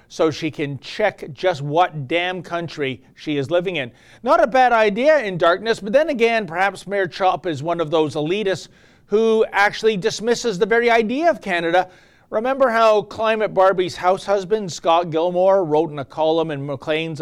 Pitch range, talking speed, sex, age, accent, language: 150-195 Hz, 180 wpm, male, 40-59, American, English